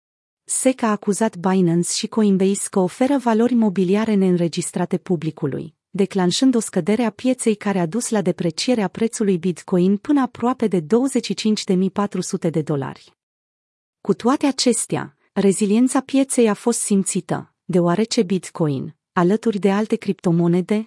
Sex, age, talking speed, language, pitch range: female, 30-49, 125 wpm, Romanian, 180-225 Hz